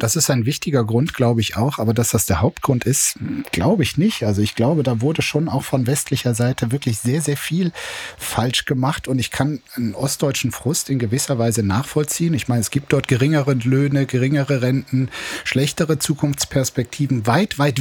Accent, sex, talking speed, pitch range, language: German, male, 190 wpm, 120-150 Hz, German